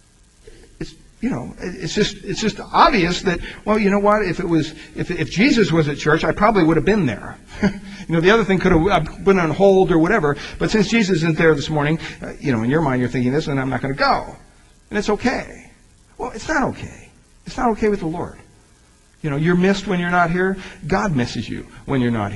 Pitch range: 140-195 Hz